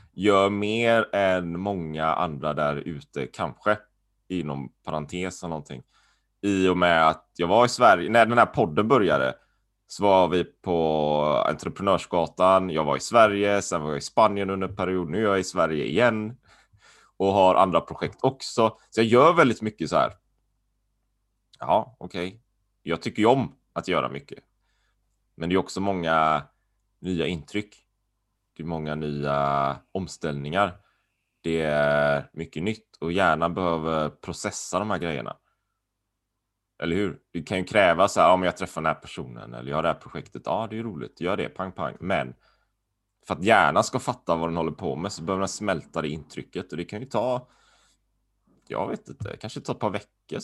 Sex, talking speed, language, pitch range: male, 175 wpm, Swedish, 80-105 Hz